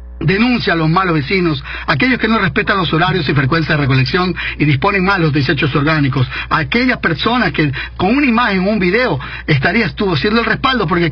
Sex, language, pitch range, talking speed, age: male, English, 160-225 Hz, 195 wpm, 50-69